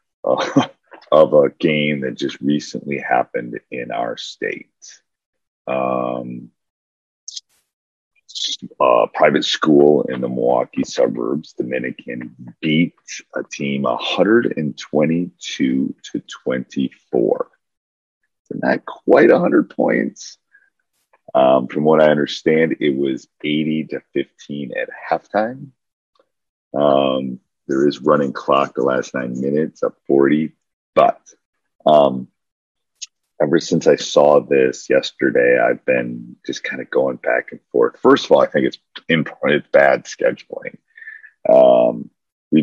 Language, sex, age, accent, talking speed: English, male, 40-59, American, 120 wpm